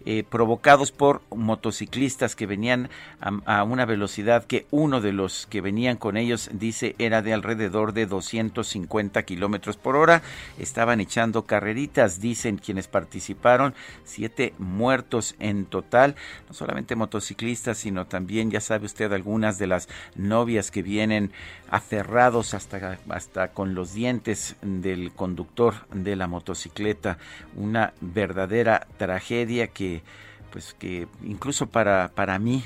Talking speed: 130 wpm